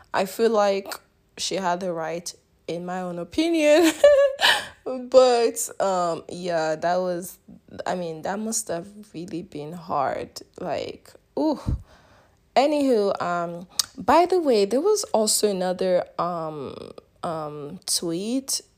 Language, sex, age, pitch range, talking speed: English, female, 20-39, 175-210 Hz, 120 wpm